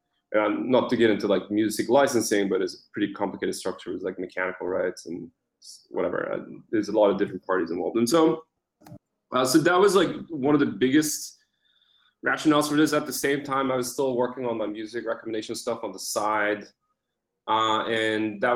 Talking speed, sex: 195 wpm, male